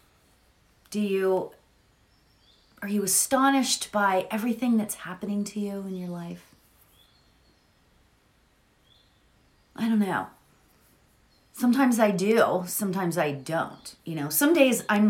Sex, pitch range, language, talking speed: female, 165-220 Hz, English, 110 wpm